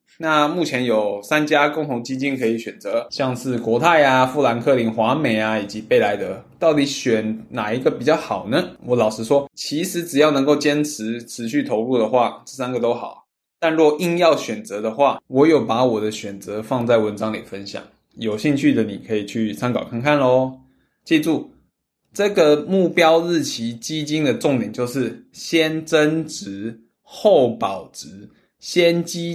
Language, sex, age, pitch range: Chinese, male, 20-39, 115-155 Hz